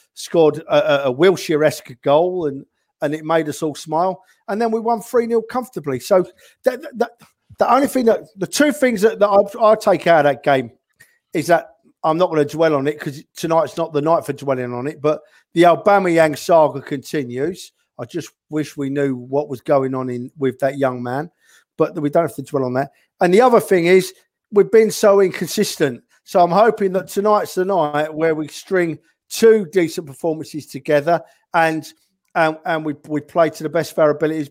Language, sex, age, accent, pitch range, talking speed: English, male, 50-69, British, 150-200 Hz, 205 wpm